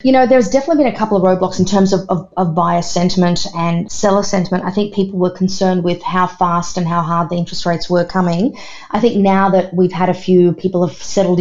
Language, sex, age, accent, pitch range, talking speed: English, female, 30-49, Australian, 175-195 Hz, 240 wpm